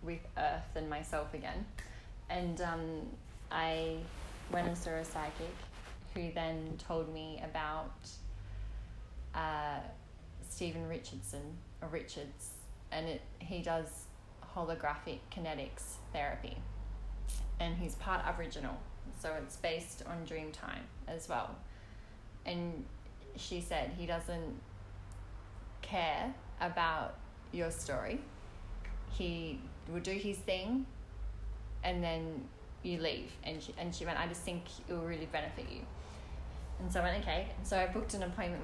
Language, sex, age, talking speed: English, female, 10-29, 130 wpm